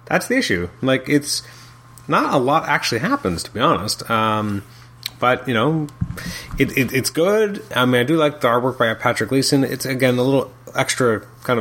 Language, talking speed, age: English, 180 wpm, 30-49